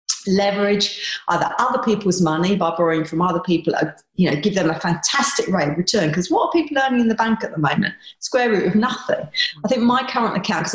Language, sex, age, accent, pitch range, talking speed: English, female, 40-59, British, 160-205 Hz, 225 wpm